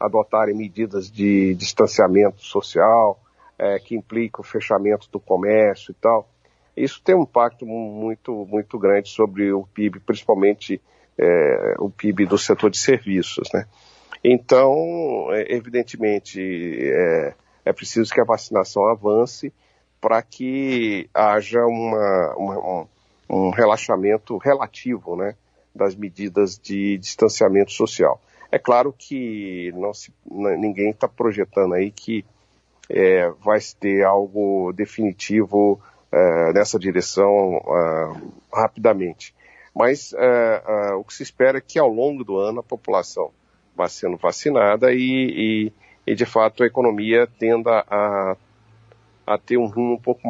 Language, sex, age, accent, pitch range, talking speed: Portuguese, male, 50-69, Brazilian, 100-120 Hz, 125 wpm